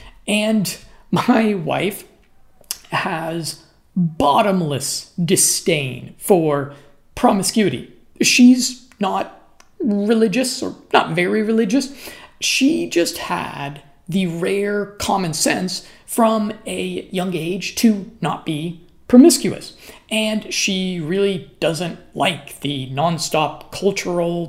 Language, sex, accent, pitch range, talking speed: English, male, American, 165-220 Hz, 95 wpm